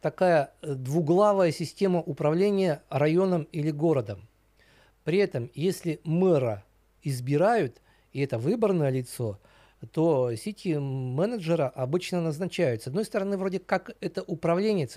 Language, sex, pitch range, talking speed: Russian, male, 120-175 Hz, 110 wpm